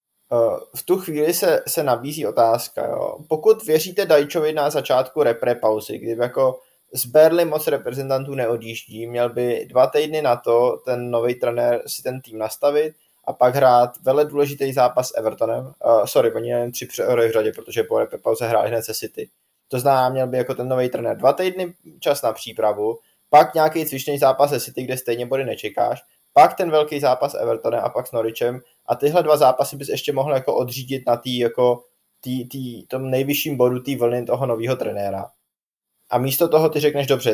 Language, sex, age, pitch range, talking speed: Czech, male, 20-39, 125-160 Hz, 185 wpm